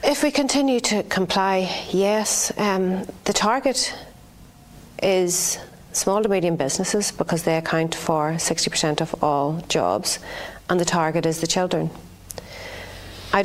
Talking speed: 130 wpm